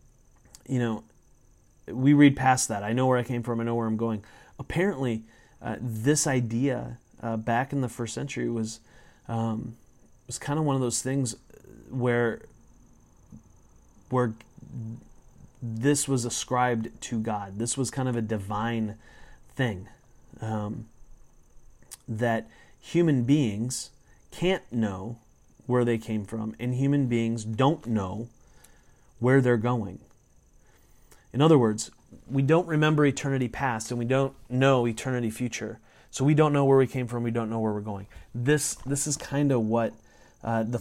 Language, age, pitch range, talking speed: English, 30-49, 110-135 Hz, 155 wpm